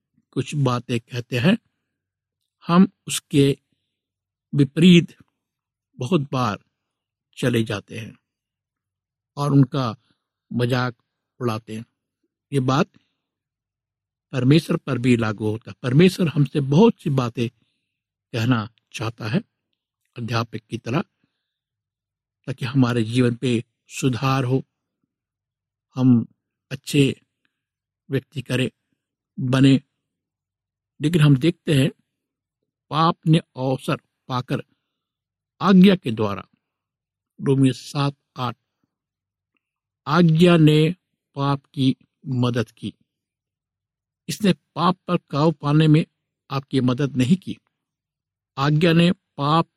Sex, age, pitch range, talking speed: male, 60-79, 120-150 Hz, 95 wpm